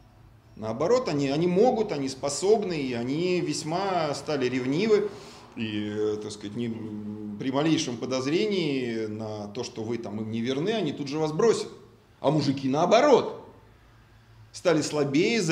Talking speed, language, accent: 135 wpm, Russian, native